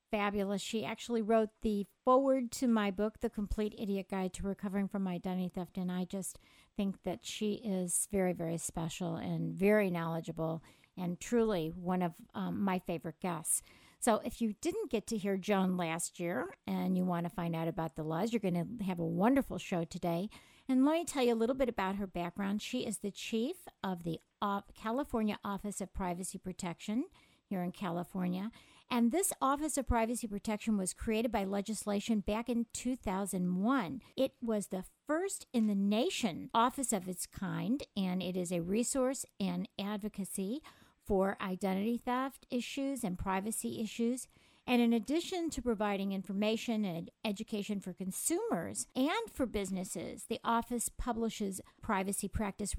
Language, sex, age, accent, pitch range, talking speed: English, female, 50-69, American, 185-235 Hz, 170 wpm